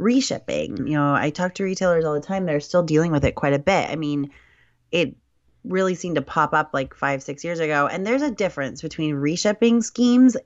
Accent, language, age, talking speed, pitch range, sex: American, English, 30-49, 220 wpm, 140-170 Hz, female